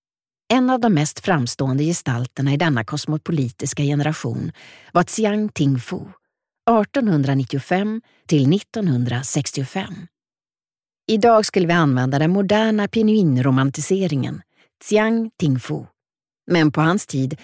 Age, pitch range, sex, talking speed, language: 40-59, 150-210 Hz, female, 95 wpm, Swedish